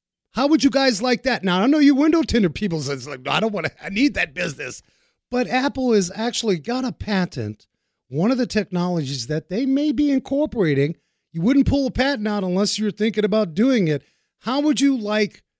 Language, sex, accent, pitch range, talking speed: English, male, American, 150-250 Hz, 215 wpm